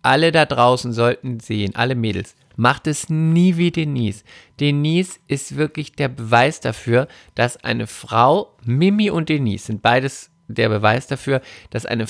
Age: 50-69